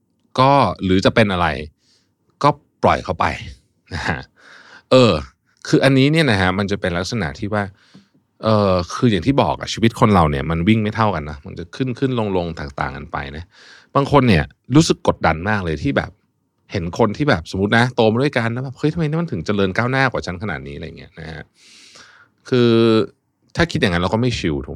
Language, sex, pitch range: Thai, male, 90-125 Hz